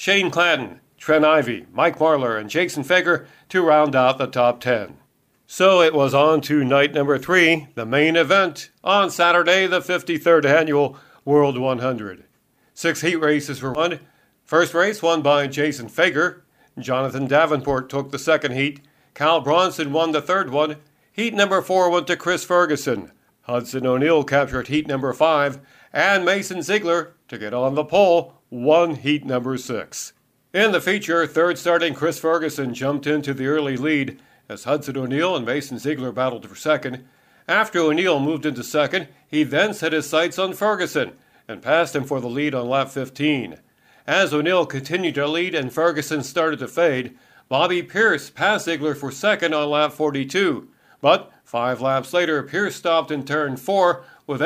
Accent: American